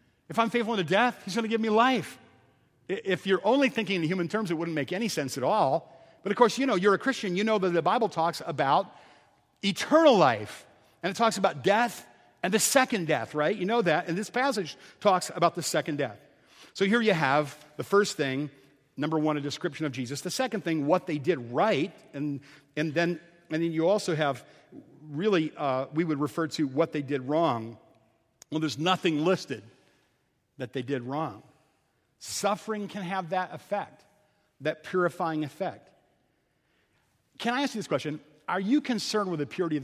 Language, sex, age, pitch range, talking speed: English, male, 50-69, 145-190 Hz, 195 wpm